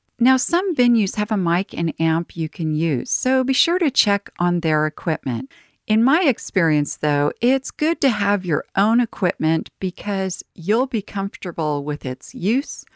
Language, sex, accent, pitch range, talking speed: English, female, American, 150-215 Hz, 170 wpm